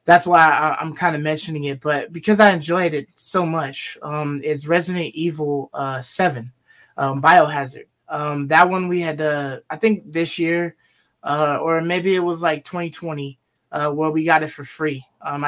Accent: American